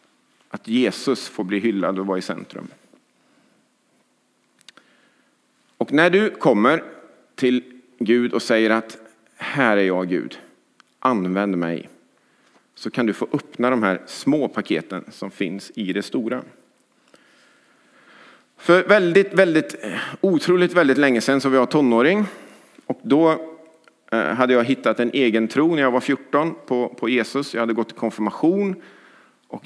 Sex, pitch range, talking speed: male, 110-170 Hz, 140 wpm